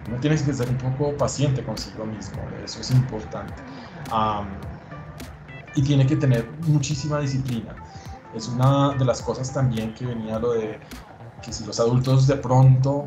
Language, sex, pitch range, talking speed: Spanish, male, 115-135 Hz, 155 wpm